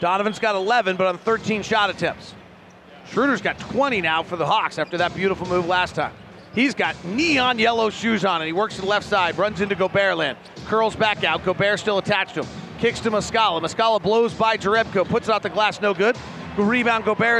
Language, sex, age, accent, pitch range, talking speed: English, male, 40-59, American, 180-225 Hz, 215 wpm